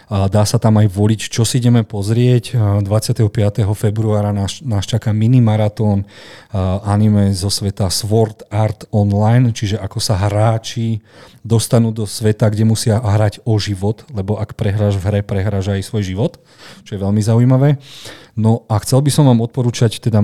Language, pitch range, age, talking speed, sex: Slovak, 105-115 Hz, 40-59, 165 wpm, male